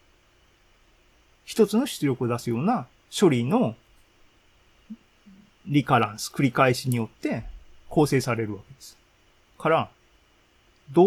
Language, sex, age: Japanese, male, 40-59